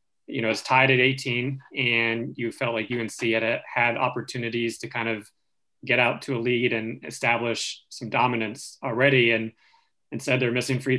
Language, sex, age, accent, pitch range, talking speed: English, male, 30-49, American, 115-125 Hz, 180 wpm